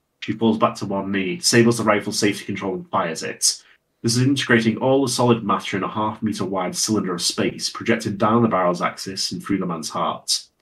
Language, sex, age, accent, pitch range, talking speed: English, male, 30-49, British, 100-115 Hz, 220 wpm